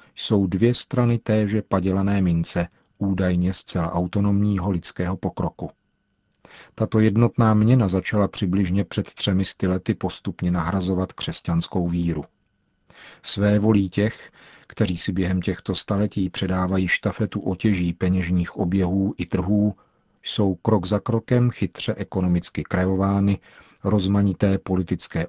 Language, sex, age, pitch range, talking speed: Czech, male, 40-59, 90-105 Hz, 115 wpm